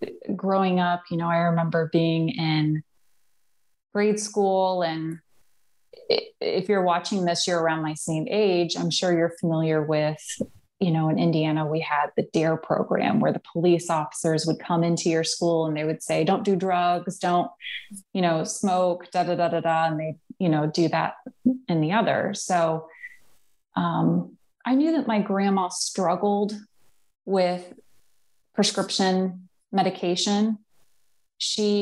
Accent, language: American, English